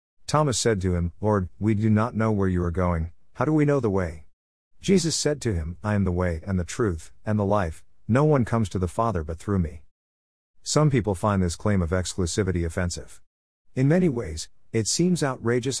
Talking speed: 215 wpm